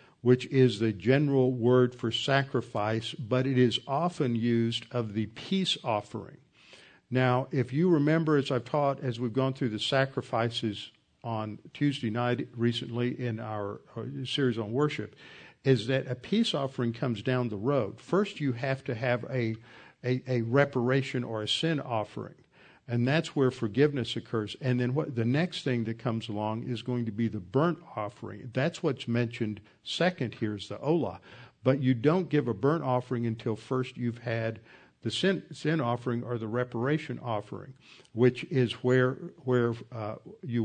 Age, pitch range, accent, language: 50-69, 115-140 Hz, American, English